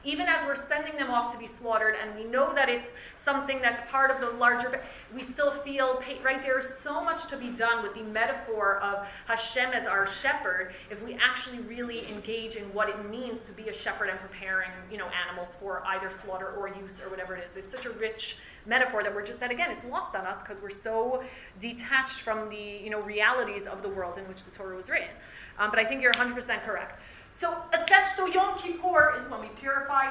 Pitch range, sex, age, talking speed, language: 200-265 Hz, female, 30-49, 225 wpm, English